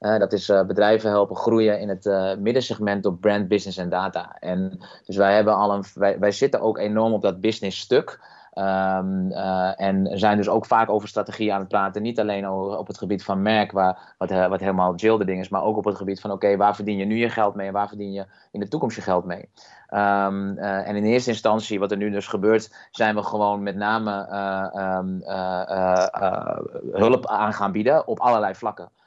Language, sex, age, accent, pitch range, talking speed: Dutch, male, 20-39, Dutch, 100-115 Hz, 235 wpm